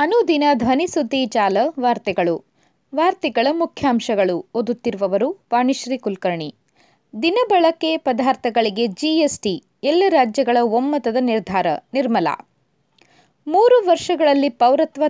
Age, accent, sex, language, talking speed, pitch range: 20-39, native, female, Kannada, 85 wpm, 235-315 Hz